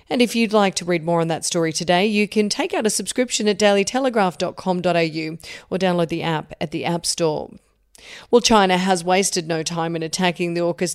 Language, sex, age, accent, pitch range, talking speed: English, female, 40-59, Australian, 175-210 Hz, 205 wpm